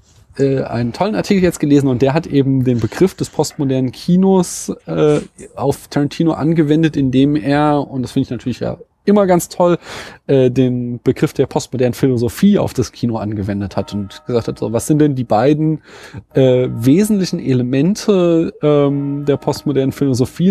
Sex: male